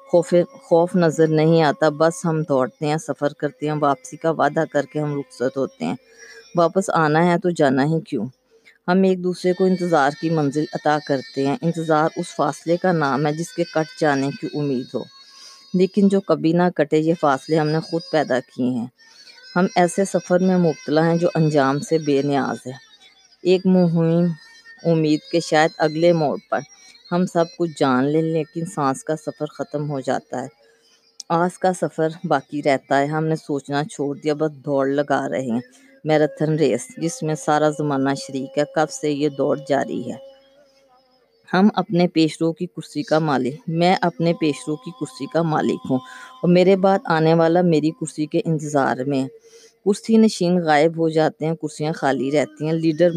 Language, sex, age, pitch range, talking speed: Urdu, female, 20-39, 150-180 Hz, 185 wpm